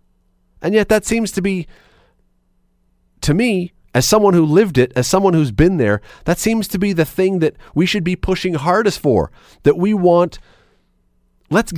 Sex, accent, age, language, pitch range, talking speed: male, American, 40-59, English, 115-180 Hz, 180 wpm